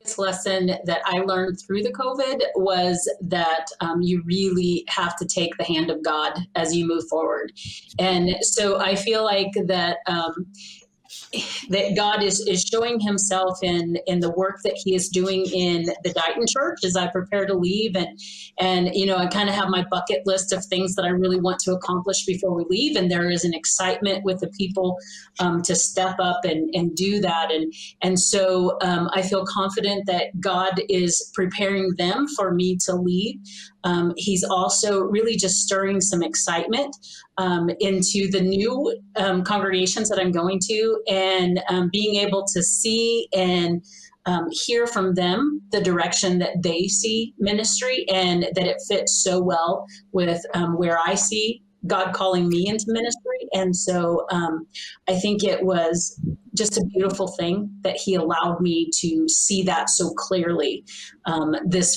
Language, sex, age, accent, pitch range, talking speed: English, female, 30-49, American, 175-200 Hz, 175 wpm